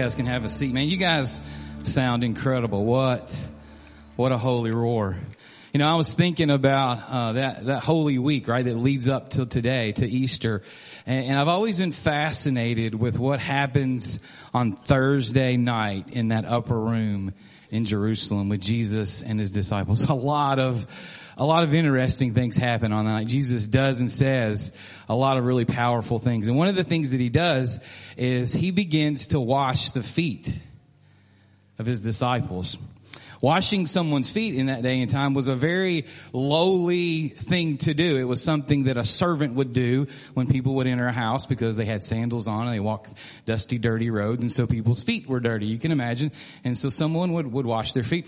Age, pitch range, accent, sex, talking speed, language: 40-59, 115-140 Hz, American, male, 190 wpm, English